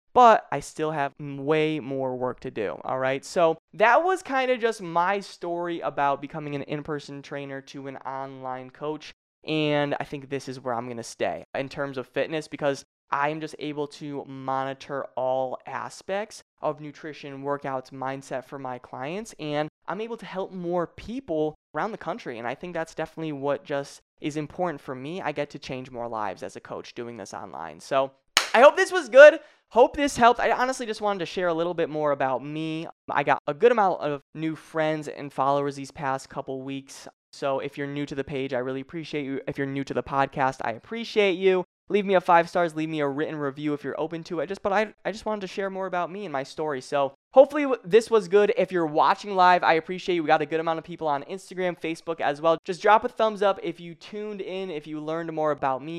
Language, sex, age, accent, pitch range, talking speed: English, male, 20-39, American, 140-180 Hz, 225 wpm